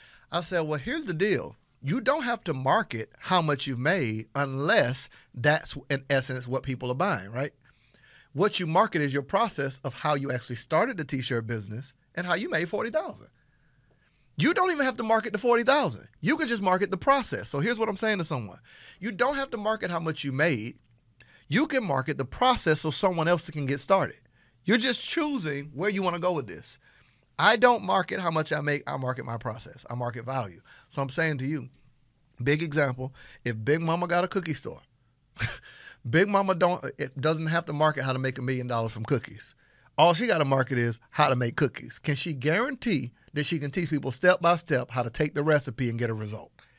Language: English